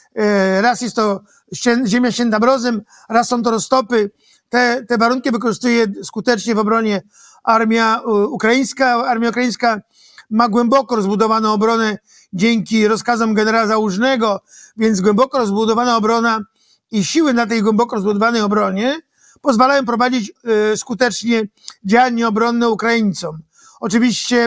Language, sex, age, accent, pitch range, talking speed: Polish, male, 50-69, native, 220-245 Hz, 115 wpm